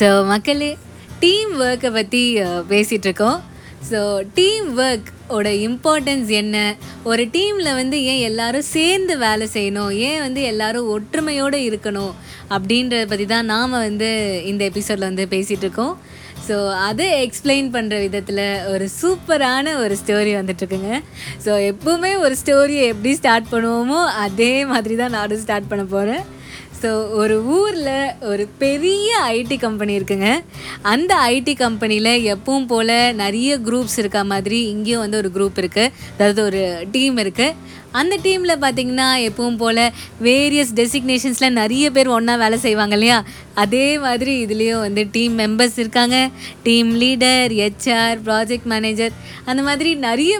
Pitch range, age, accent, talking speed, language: 210-265 Hz, 20-39, native, 135 wpm, Tamil